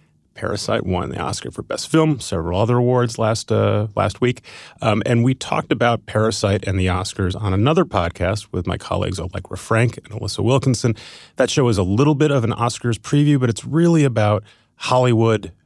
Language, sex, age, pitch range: English, male, 30-49, 95-120 Hz